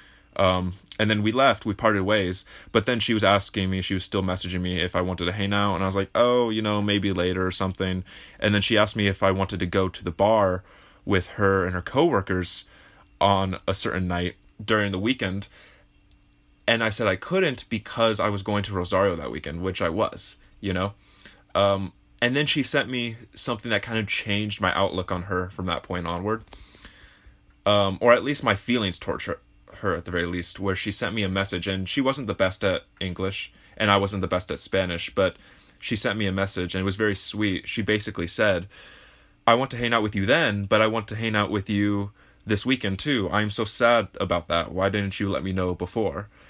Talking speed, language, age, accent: 225 wpm, English, 20-39, American